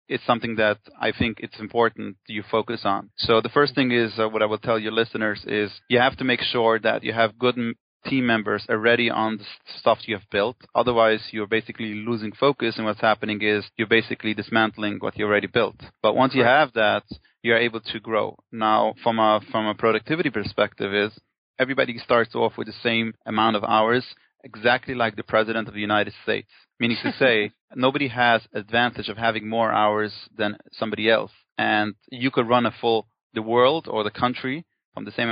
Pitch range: 110-120 Hz